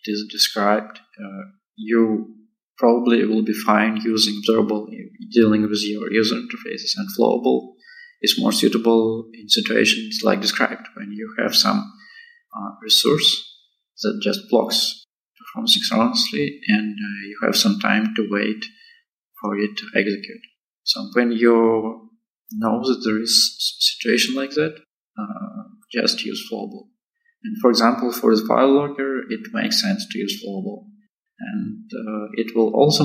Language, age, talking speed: English, 20-39, 150 wpm